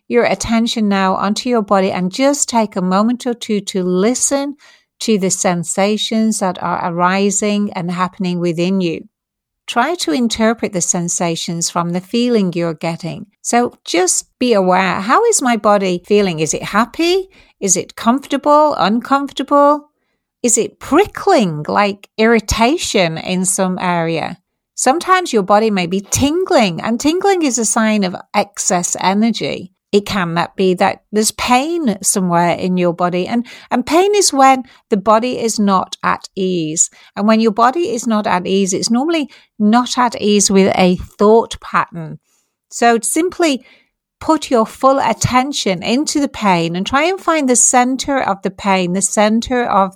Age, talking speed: 60-79, 160 wpm